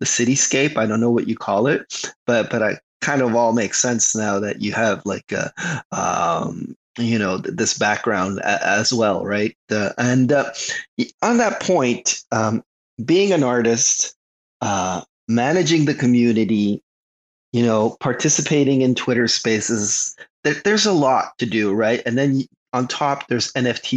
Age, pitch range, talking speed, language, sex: 30-49, 115-140 Hz, 165 wpm, English, male